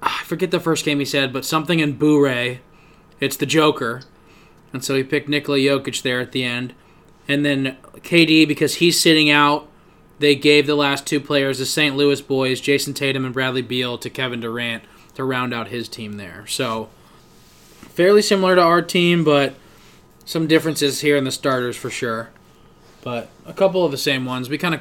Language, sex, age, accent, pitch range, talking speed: English, male, 20-39, American, 130-155 Hz, 195 wpm